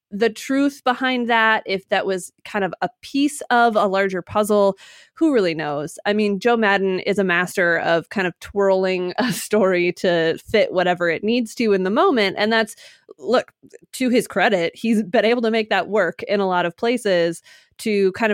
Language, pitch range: English, 180-225 Hz